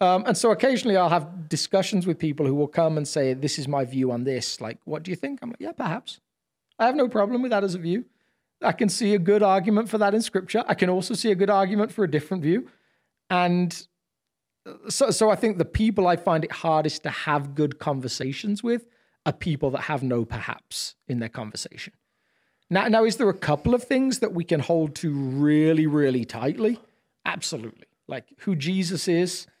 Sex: male